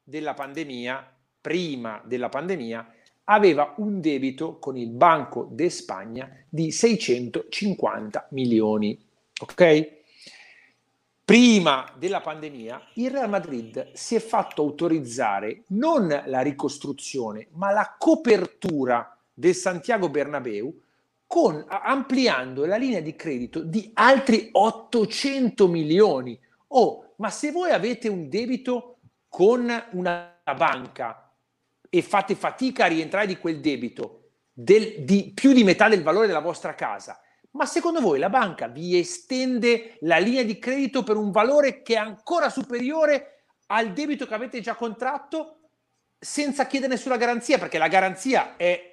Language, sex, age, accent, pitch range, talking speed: Italian, male, 50-69, native, 155-250 Hz, 130 wpm